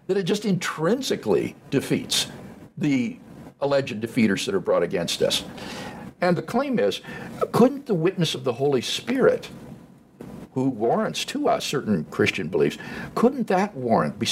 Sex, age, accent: male, 60-79, American